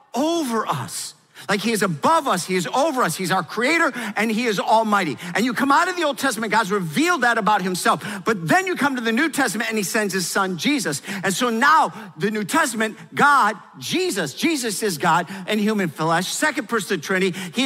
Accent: American